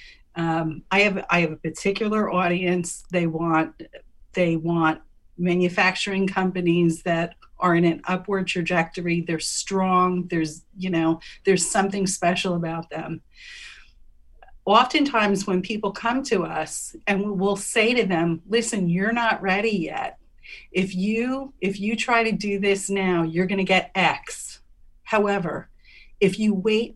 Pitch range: 170-215 Hz